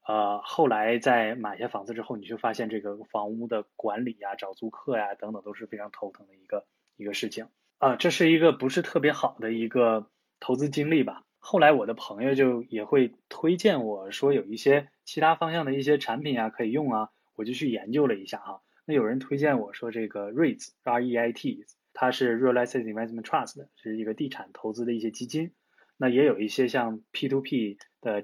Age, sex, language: 20-39, male, Chinese